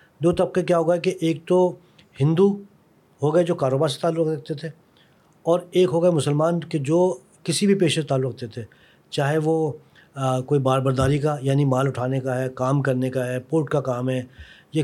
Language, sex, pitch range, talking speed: Urdu, male, 130-170 Hz, 205 wpm